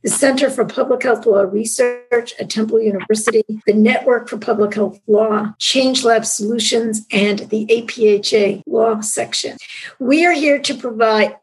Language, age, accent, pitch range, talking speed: English, 50-69, American, 215-250 Hz, 150 wpm